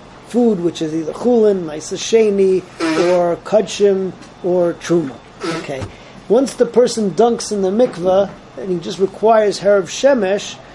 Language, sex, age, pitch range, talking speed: English, male, 40-59, 175-215 Hz, 135 wpm